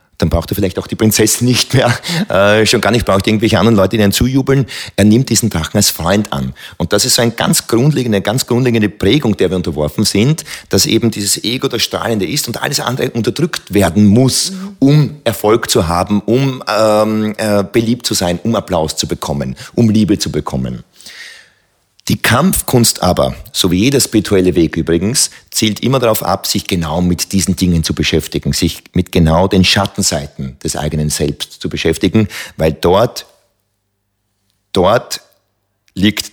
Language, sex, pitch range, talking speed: German, male, 85-115 Hz, 175 wpm